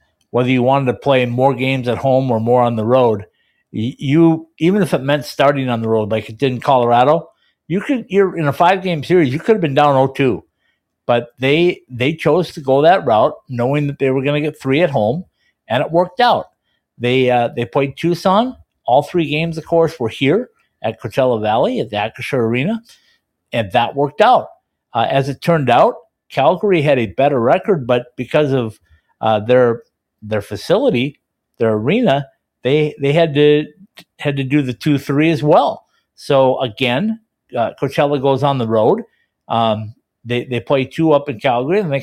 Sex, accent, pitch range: male, American, 120-155 Hz